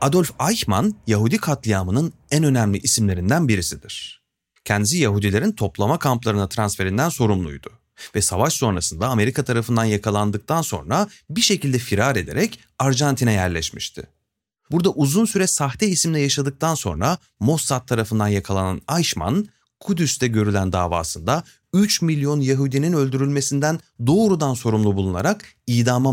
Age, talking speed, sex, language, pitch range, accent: 30-49, 115 wpm, male, Turkish, 105-155 Hz, native